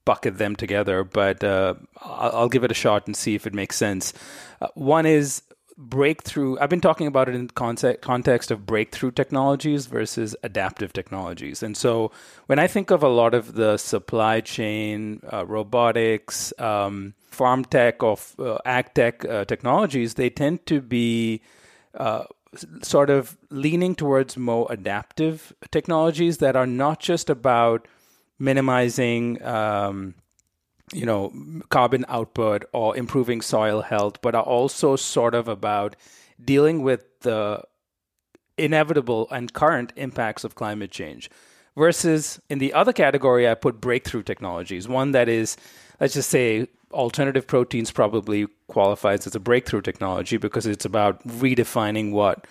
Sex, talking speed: male, 145 wpm